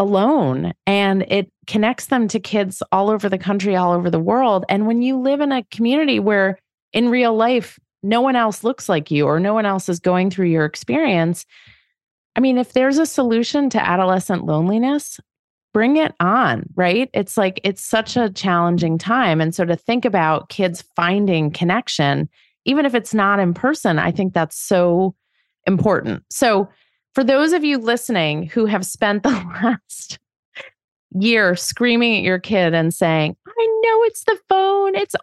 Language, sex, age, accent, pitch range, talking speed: English, female, 30-49, American, 170-250 Hz, 175 wpm